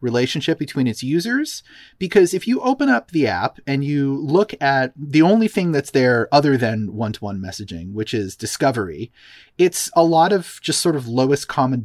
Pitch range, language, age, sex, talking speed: 115-145 Hz, English, 30-49, male, 180 wpm